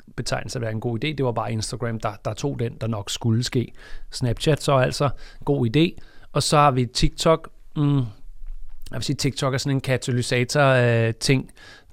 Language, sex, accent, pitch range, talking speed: Danish, male, native, 120-145 Hz, 185 wpm